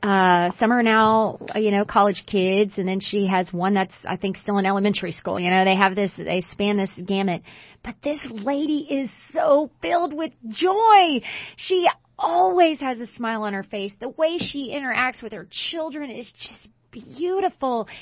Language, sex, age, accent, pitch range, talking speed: English, female, 30-49, American, 200-290 Hz, 185 wpm